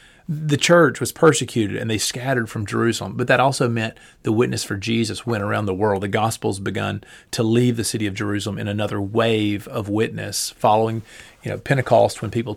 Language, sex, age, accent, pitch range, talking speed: English, male, 30-49, American, 100-120 Hz, 195 wpm